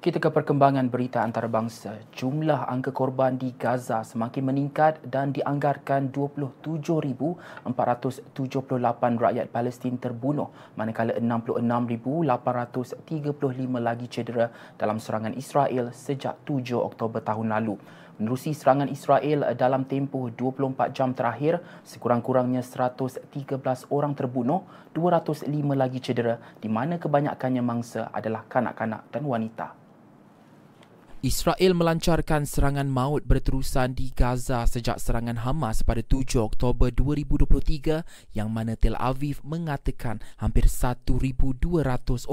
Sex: male